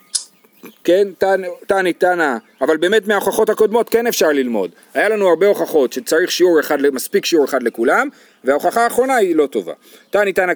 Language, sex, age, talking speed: Hebrew, male, 40-59, 160 wpm